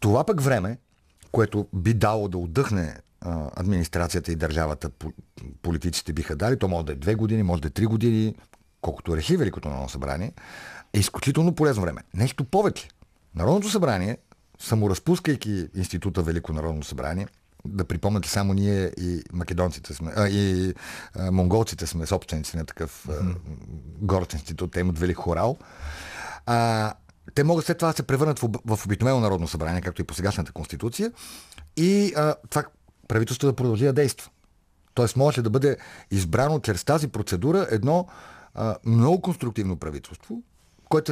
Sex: male